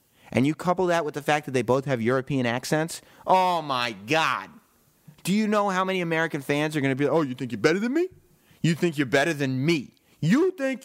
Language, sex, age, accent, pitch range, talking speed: English, male, 30-49, American, 120-160 Hz, 240 wpm